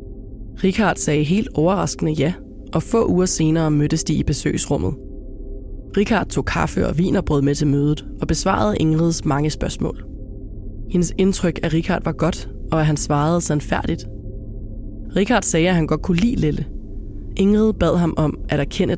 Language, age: English, 20-39